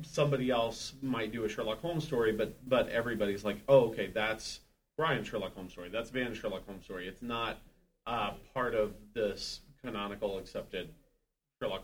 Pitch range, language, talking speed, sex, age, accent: 100-115 Hz, English, 165 wpm, male, 40-59, American